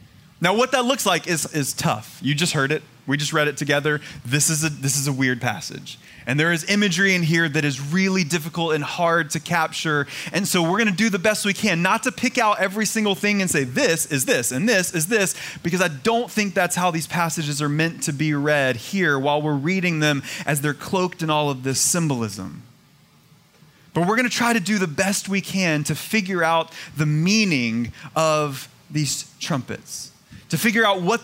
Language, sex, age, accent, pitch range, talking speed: English, male, 30-49, American, 145-195 Hz, 215 wpm